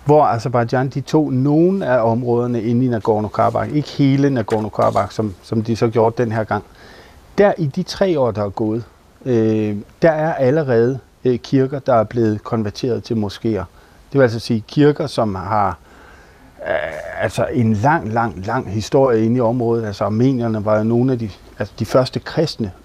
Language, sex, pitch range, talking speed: Danish, male, 110-130 Hz, 185 wpm